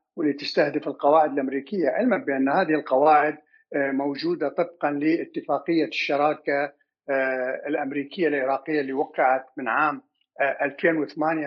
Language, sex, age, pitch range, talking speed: Arabic, male, 50-69, 145-165 Hz, 100 wpm